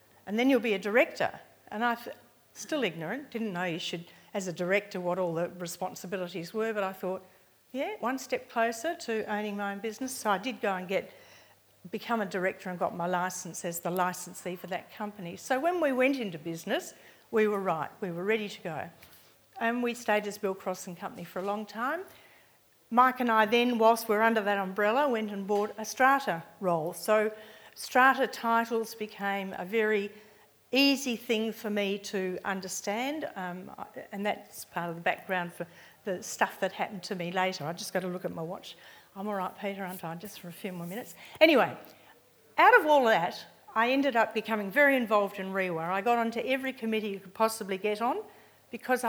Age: 50-69